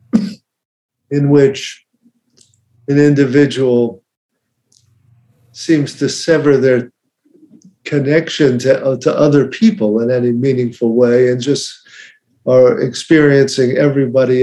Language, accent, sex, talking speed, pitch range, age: English, American, male, 95 wpm, 120-135 Hz, 50-69